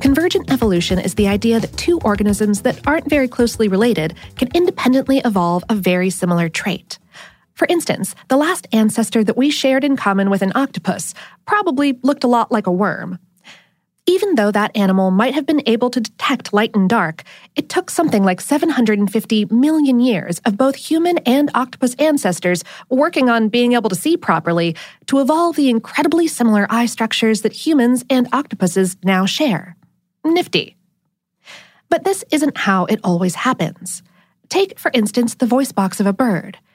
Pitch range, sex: 190-275 Hz, female